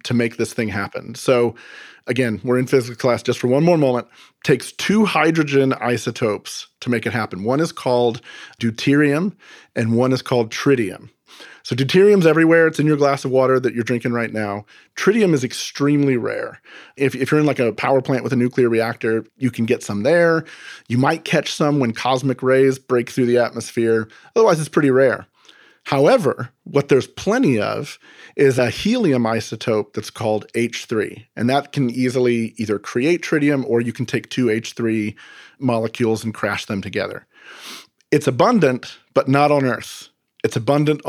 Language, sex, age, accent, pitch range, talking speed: English, male, 40-59, American, 115-140 Hz, 180 wpm